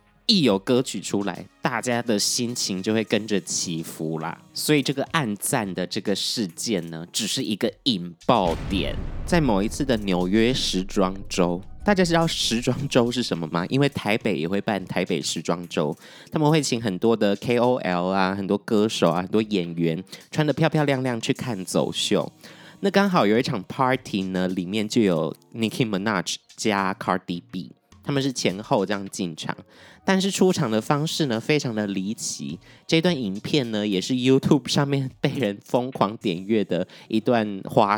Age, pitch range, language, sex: 20-39, 100-140 Hz, Chinese, male